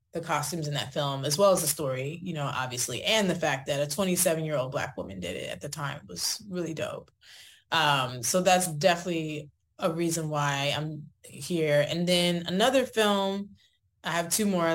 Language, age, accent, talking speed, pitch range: English, 20-39, American, 195 wpm, 140-175 Hz